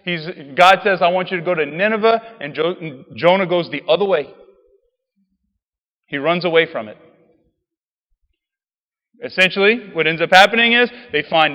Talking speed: 155 wpm